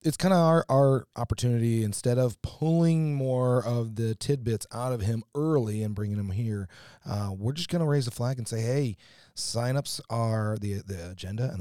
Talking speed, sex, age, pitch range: 195 wpm, male, 30-49, 105-130 Hz